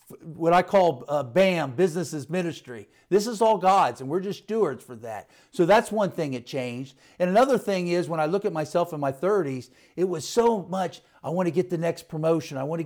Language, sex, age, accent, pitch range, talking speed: English, male, 50-69, American, 145-185 Hz, 230 wpm